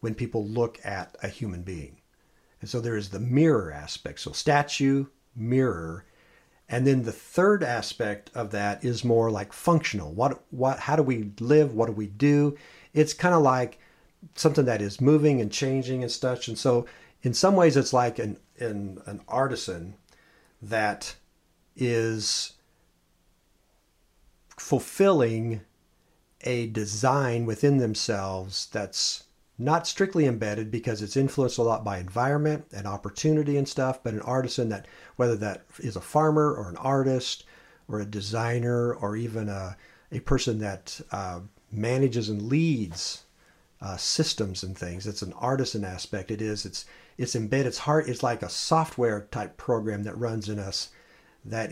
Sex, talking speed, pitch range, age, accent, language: male, 155 wpm, 105-135 Hz, 50-69, American, English